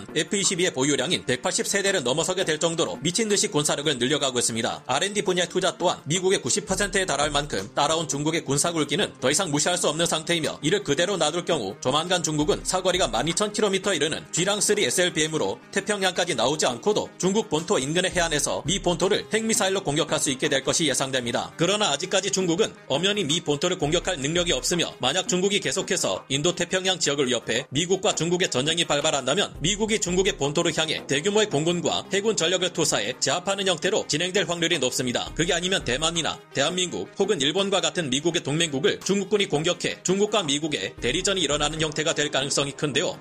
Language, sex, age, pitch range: Korean, male, 40-59, 150-195 Hz